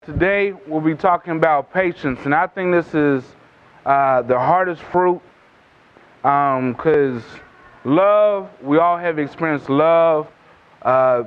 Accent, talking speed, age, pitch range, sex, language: American, 130 wpm, 30-49, 155-210 Hz, male, English